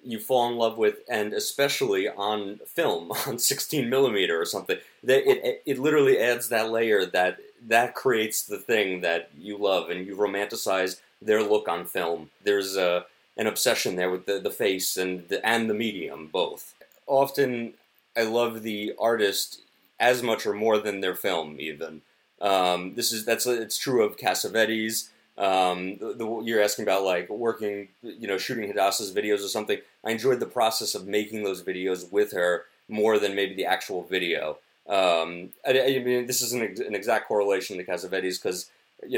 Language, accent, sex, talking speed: English, American, male, 180 wpm